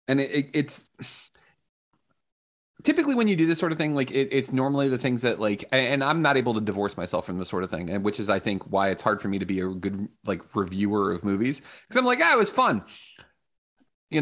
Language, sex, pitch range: English, male, 105-150 Hz